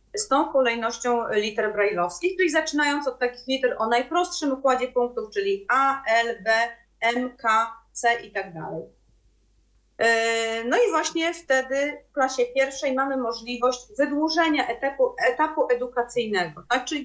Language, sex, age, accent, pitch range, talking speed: Polish, female, 30-49, native, 225-290 Hz, 135 wpm